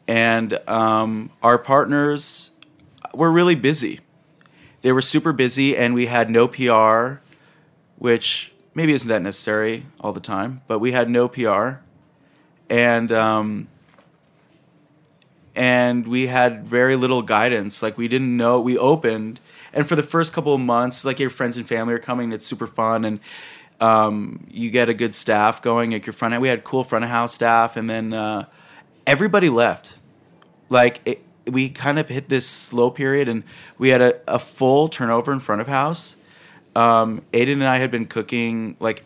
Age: 20-39